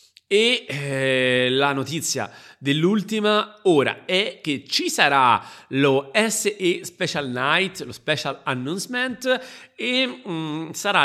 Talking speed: 110 wpm